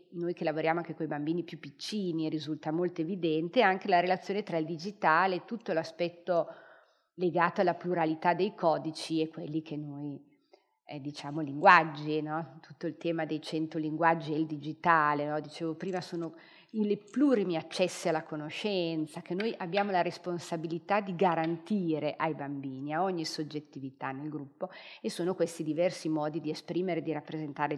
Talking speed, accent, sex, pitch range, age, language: 160 wpm, native, female, 155-175 Hz, 40-59, Italian